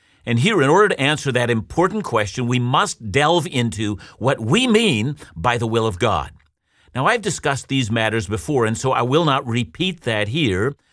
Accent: American